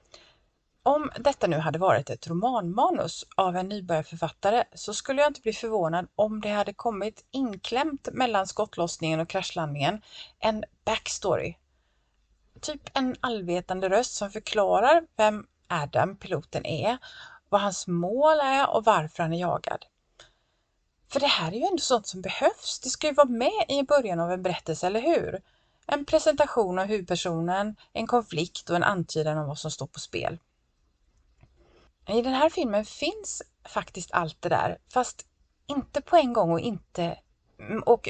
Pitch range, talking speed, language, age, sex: 175-260 Hz, 155 wpm, Swedish, 30-49, female